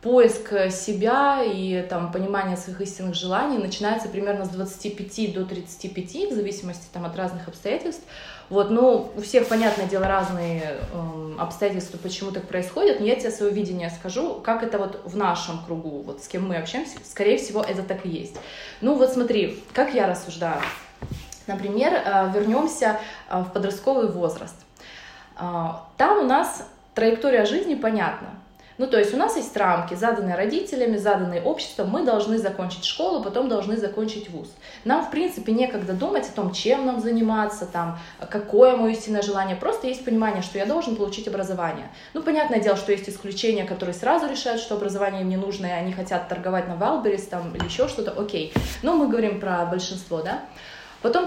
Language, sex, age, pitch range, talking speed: Russian, female, 20-39, 185-230 Hz, 170 wpm